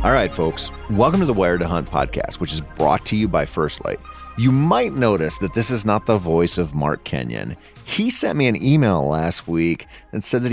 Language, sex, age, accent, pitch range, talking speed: English, male, 30-49, American, 85-130 Hz, 230 wpm